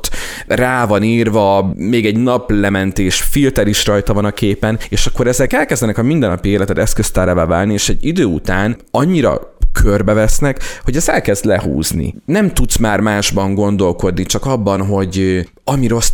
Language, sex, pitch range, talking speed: Hungarian, male, 95-115 Hz, 155 wpm